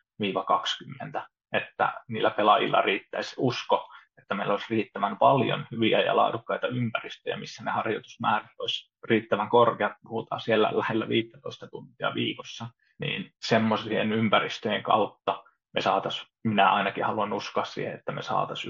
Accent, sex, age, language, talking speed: native, male, 20-39, Finnish, 130 wpm